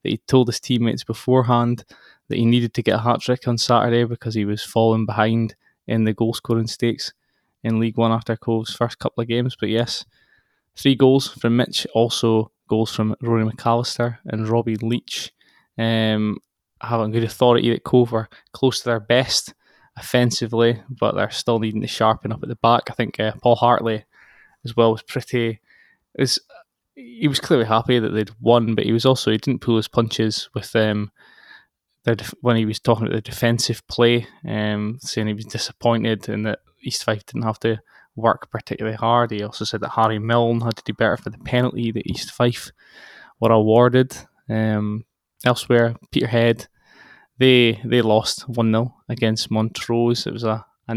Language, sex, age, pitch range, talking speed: English, male, 20-39, 110-120 Hz, 185 wpm